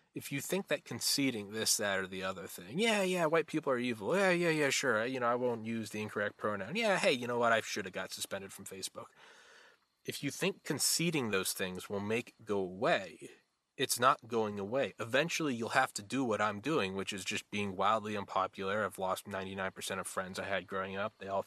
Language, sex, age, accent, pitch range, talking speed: English, male, 20-39, American, 100-155 Hz, 225 wpm